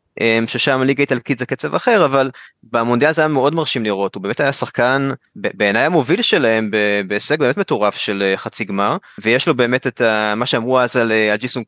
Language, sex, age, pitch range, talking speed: Hebrew, male, 20-39, 110-135 Hz, 180 wpm